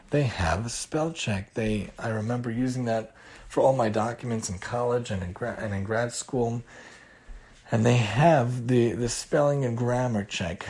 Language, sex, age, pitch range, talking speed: English, male, 40-59, 105-125 Hz, 180 wpm